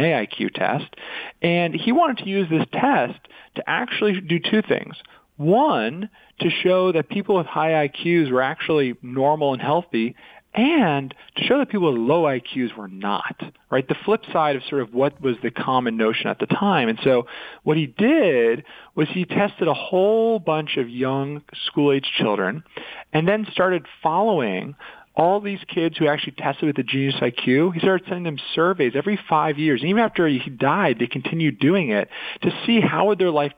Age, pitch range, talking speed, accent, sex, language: 40-59, 130-185 Hz, 185 wpm, American, male, English